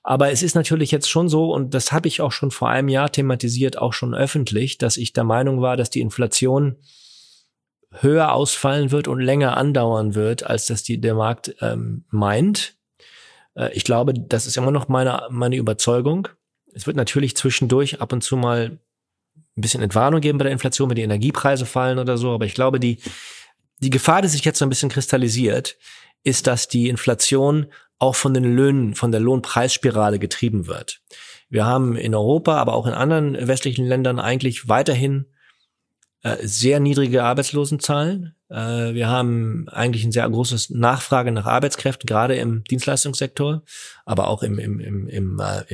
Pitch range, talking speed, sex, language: 115-140 Hz, 175 wpm, male, German